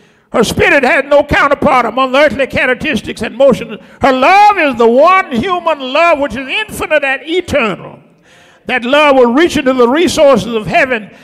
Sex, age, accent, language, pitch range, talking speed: male, 50-69, American, English, 240-315 Hz, 170 wpm